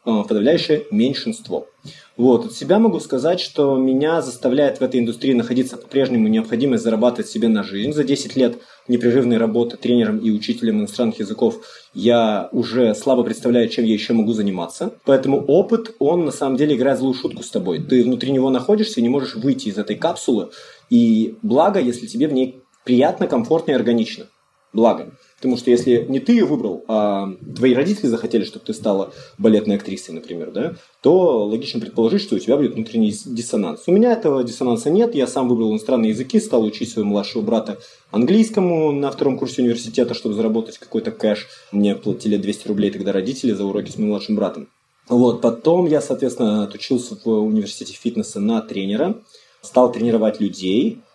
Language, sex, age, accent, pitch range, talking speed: Russian, male, 20-39, native, 110-150 Hz, 170 wpm